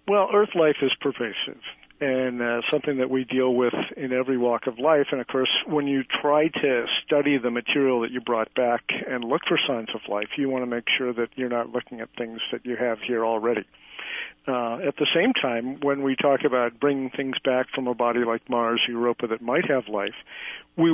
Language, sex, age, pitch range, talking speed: English, male, 50-69, 125-145 Hz, 220 wpm